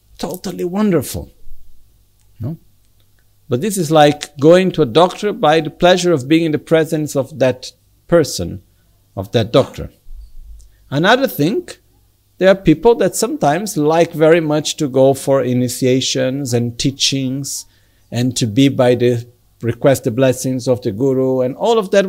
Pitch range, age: 105-150 Hz, 60-79